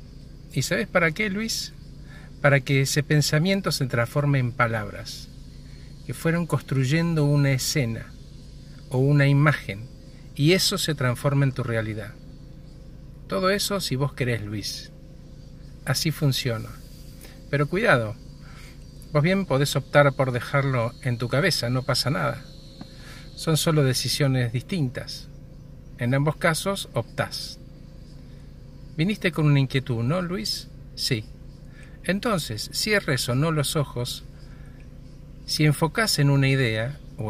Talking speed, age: 125 wpm, 50-69